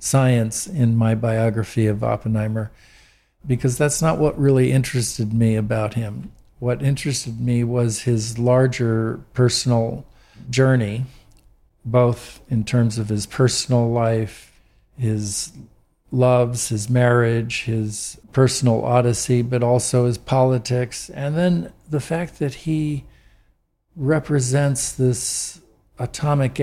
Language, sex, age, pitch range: Chinese, male, 50-69, 110-130 Hz